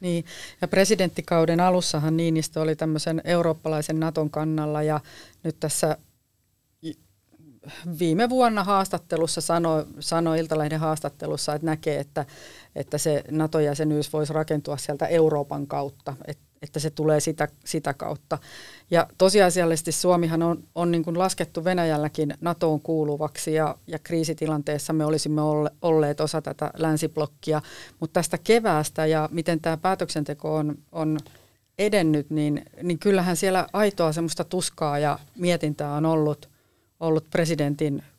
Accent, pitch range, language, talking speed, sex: native, 150-170 Hz, Finnish, 125 wpm, female